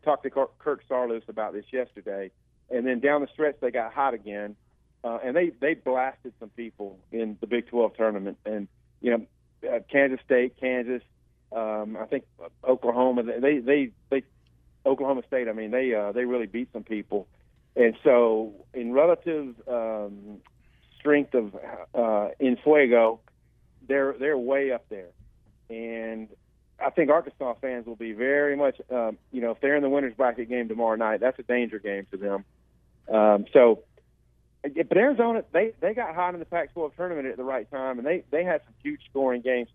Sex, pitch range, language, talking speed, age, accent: male, 110-140 Hz, English, 180 wpm, 40-59, American